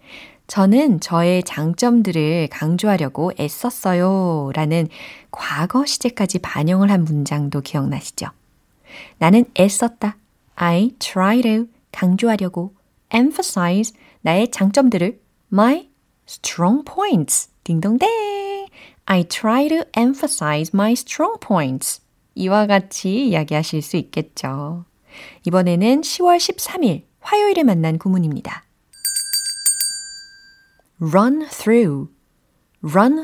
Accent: native